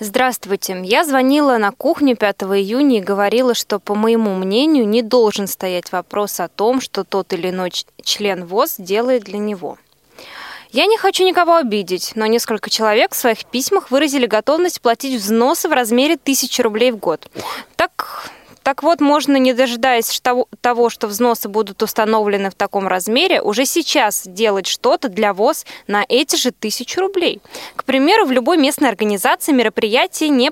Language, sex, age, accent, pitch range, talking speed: Russian, female, 20-39, native, 205-270 Hz, 160 wpm